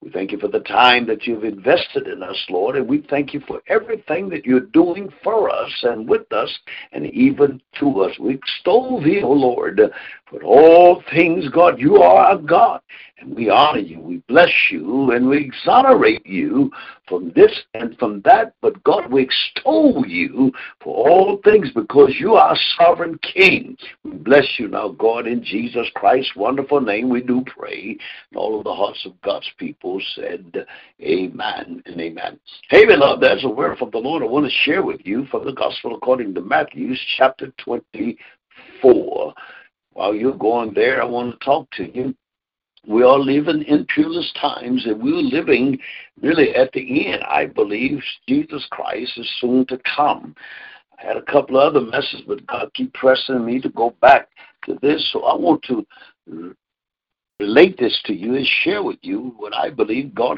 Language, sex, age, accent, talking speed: English, male, 60-79, American, 185 wpm